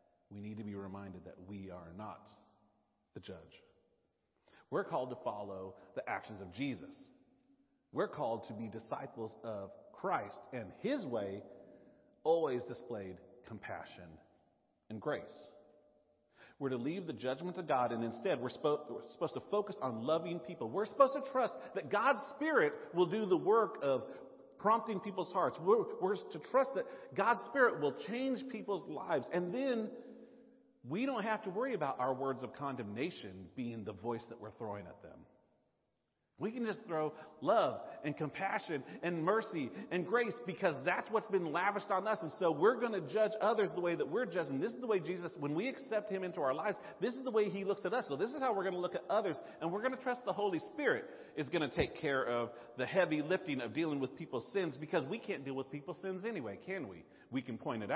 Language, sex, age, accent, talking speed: English, male, 40-59, American, 200 wpm